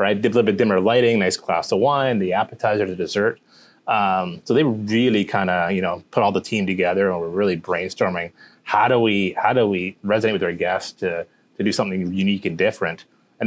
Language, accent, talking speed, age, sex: English, American, 225 wpm, 30-49, male